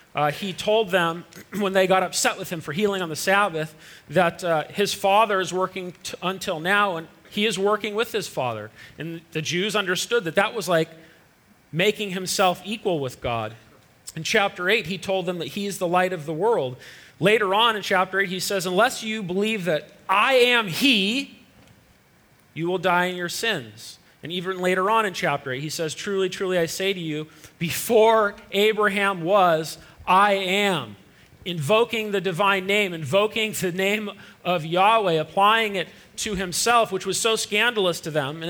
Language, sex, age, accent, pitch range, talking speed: English, male, 40-59, American, 165-205 Hz, 180 wpm